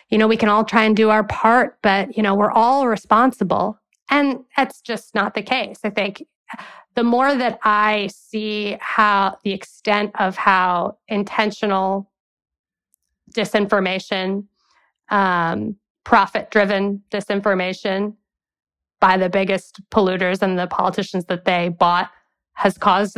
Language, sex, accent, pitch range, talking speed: English, female, American, 200-230 Hz, 130 wpm